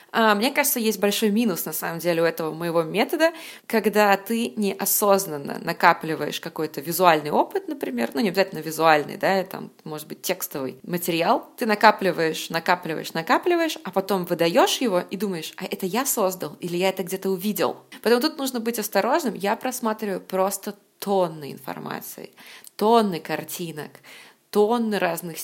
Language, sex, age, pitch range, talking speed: Russian, female, 20-39, 170-210 Hz, 150 wpm